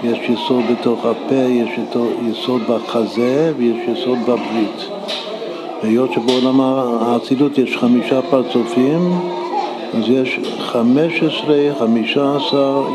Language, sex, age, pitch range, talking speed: Hebrew, male, 60-79, 120-145 Hz, 90 wpm